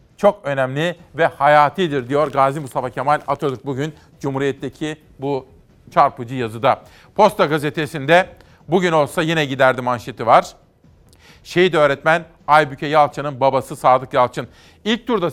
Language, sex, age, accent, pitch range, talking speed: Turkish, male, 40-59, native, 140-170 Hz, 120 wpm